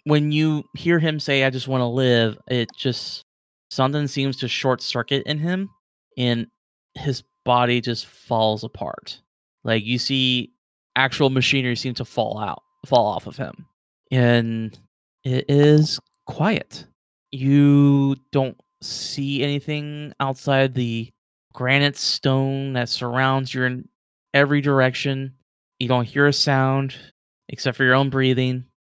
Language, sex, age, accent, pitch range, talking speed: English, male, 20-39, American, 120-140 Hz, 135 wpm